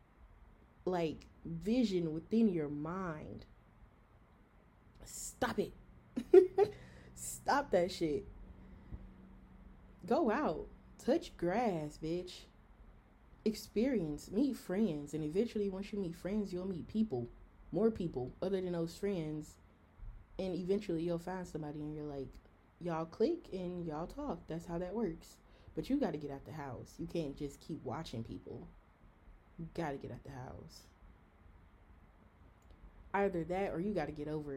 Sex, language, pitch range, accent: female, English, 135-180 Hz, American